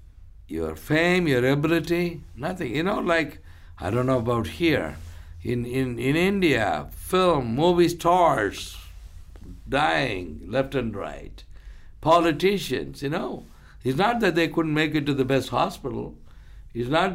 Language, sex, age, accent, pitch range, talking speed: English, male, 60-79, Indian, 85-145 Hz, 140 wpm